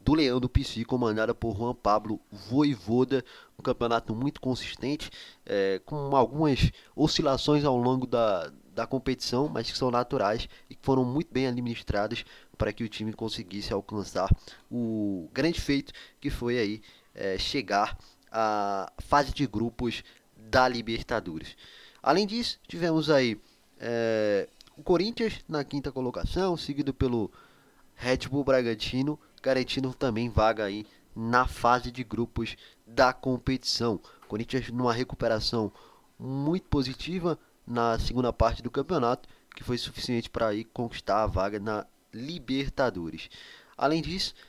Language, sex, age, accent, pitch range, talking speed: Portuguese, male, 20-39, Brazilian, 115-140 Hz, 130 wpm